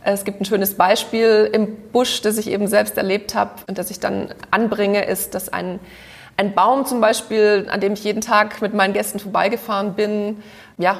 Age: 30-49